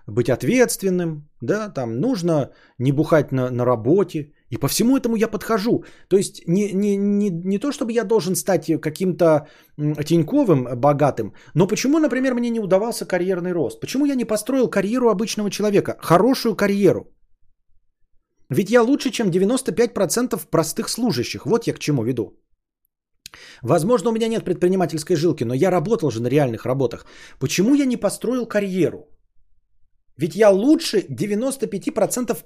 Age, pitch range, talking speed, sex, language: 30-49, 135-210 Hz, 150 wpm, male, Bulgarian